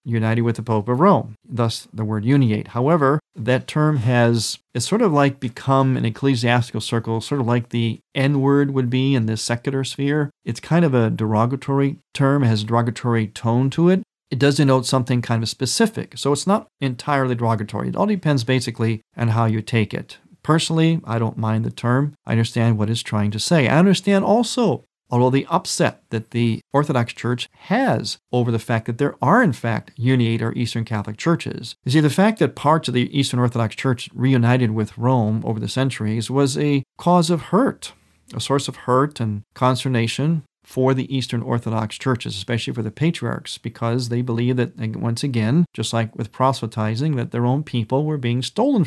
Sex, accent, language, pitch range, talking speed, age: male, American, English, 115-140 Hz, 195 wpm, 40-59